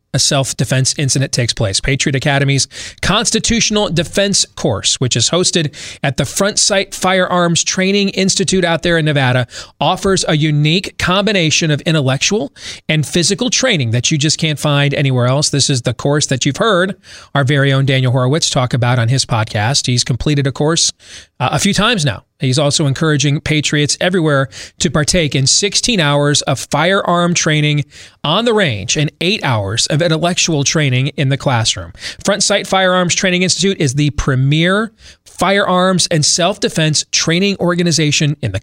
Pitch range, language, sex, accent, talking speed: 135-175 Hz, English, male, American, 165 wpm